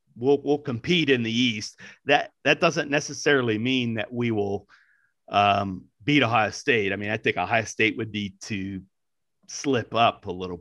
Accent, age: American, 40-59